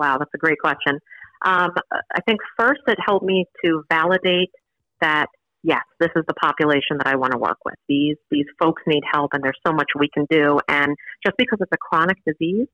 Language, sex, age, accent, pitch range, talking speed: English, female, 40-59, American, 155-185 Hz, 210 wpm